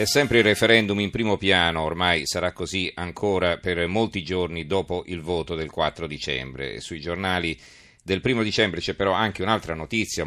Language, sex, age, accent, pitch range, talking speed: Italian, male, 40-59, native, 80-95 Hz, 175 wpm